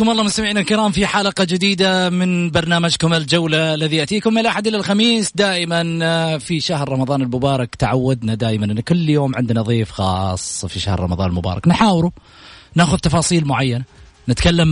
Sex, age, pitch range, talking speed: male, 30-49, 115-170 Hz, 155 wpm